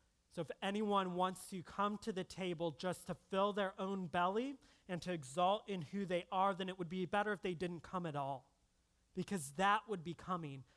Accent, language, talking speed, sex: American, English, 210 wpm, male